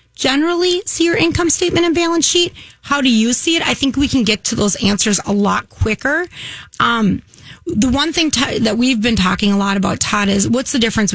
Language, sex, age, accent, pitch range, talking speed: English, female, 30-49, American, 205-275 Hz, 215 wpm